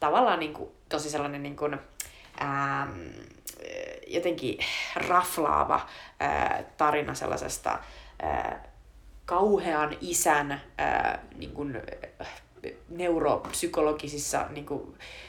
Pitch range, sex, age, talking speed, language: 145-175 Hz, female, 30-49, 65 wpm, Finnish